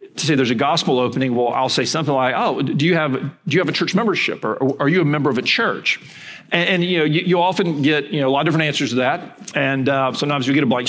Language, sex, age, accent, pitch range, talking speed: English, male, 40-59, American, 135-175 Hz, 300 wpm